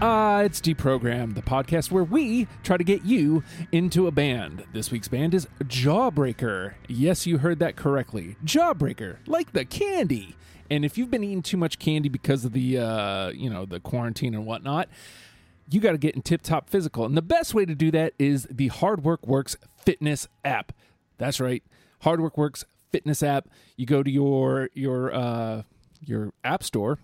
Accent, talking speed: American, 185 wpm